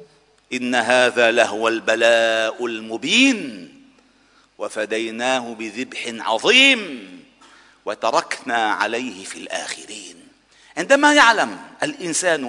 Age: 50-69